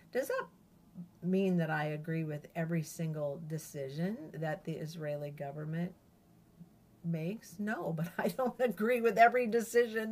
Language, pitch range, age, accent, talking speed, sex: English, 155-190 Hz, 50-69, American, 135 wpm, female